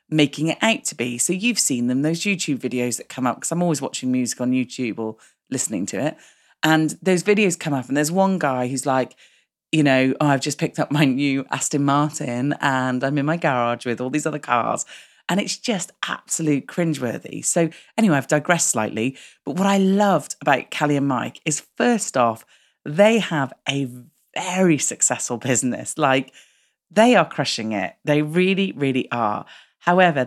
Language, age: English, 40-59